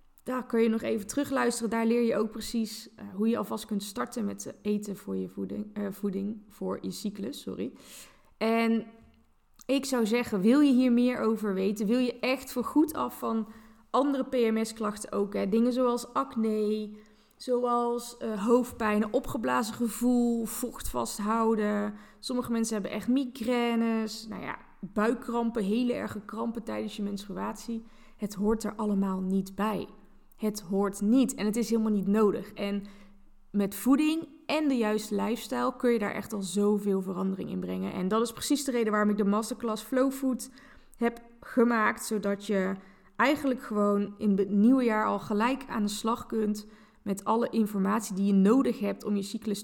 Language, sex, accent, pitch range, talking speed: Dutch, female, Dutch, 205-240 Hz, 170 wpm